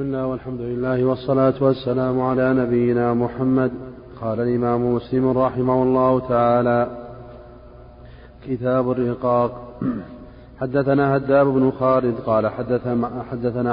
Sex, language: male, Arabic